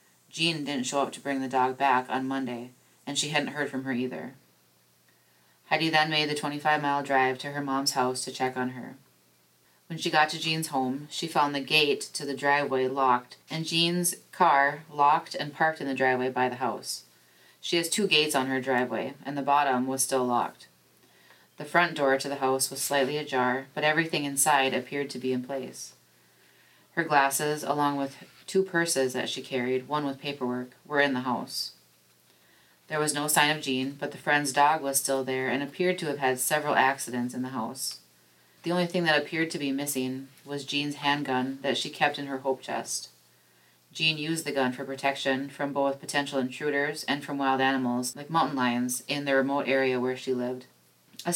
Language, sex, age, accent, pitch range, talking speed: English, female, 20-39, American, 125-150 Hz, 200 wpm